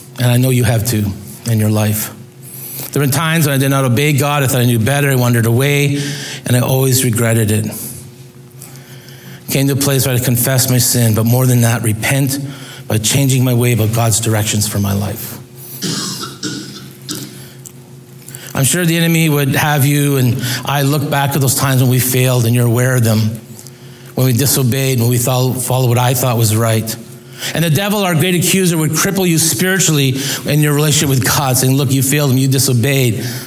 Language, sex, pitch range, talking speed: English, male, 120-135 Hz, 195 wpm